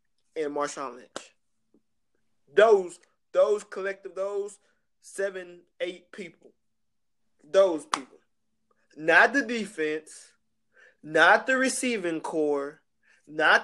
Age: 20-39